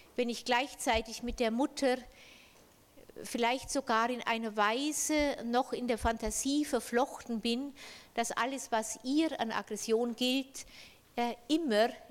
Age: 50-69